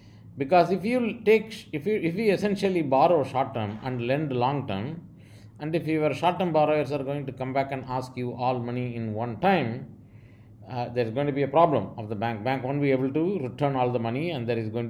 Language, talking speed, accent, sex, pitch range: English, 230 wpm, Indian, male, 110-150 Hz